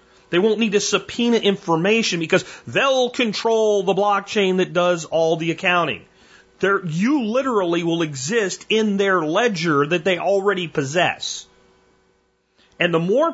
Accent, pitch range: American, 135-195 Hz